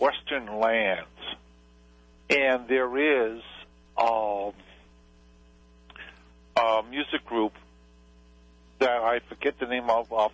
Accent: American